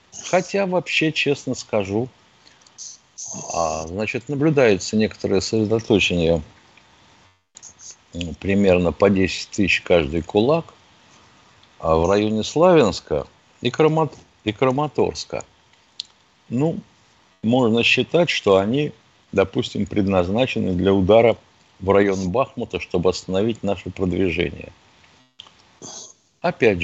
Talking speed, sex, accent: 85 wpm, male, native